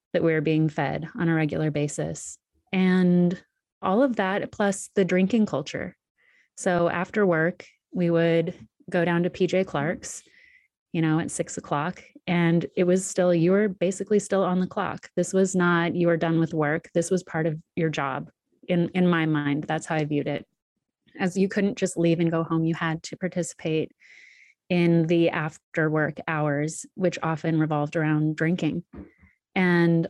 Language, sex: English, female